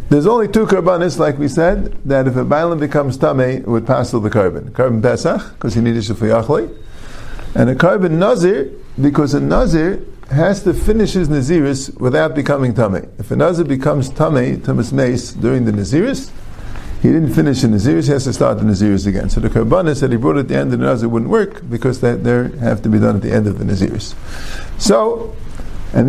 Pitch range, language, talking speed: 110-155 Hz, English, 210 wpm